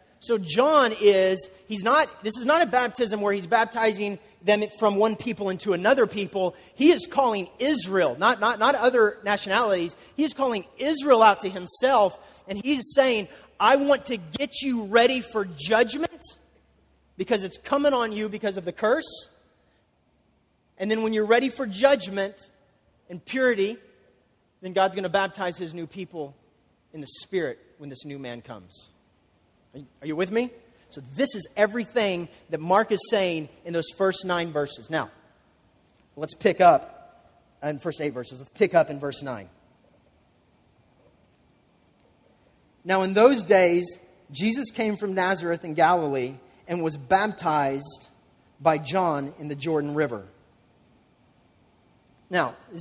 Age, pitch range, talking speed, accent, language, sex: 30-49, 155-225 Hz, 150 wpm, American, English, male